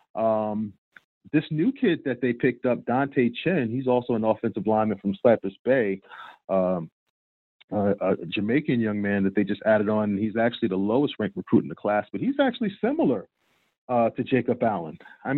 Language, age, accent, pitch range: English, 40-59, American, 105-130 Hz